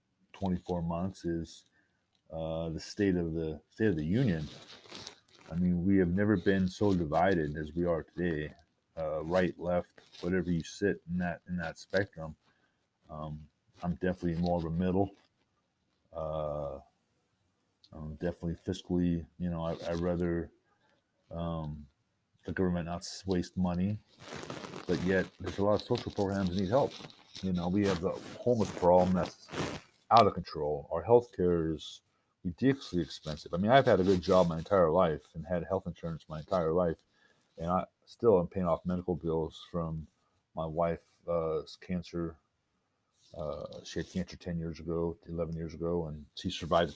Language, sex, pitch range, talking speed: English, male, 80-95 Hz, 160 wpm